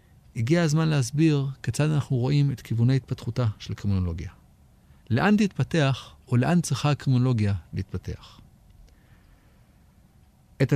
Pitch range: 105-145 Hz